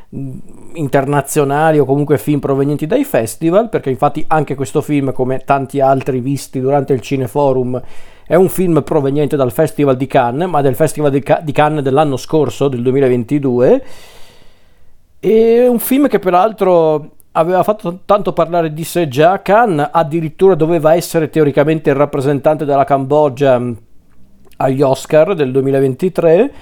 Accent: native